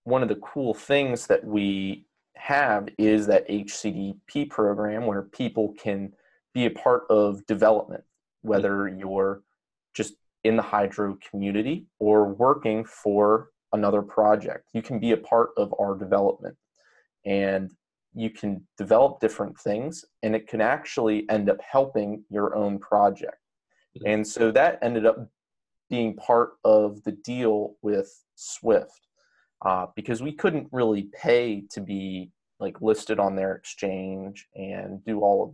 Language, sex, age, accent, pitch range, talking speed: English, male, 30-49, American, 100-115 Hz, 145 wpm